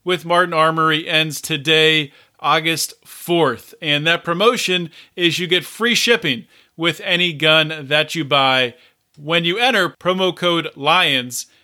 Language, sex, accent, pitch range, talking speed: English, male, American, 155-200 Hz, 140 wpm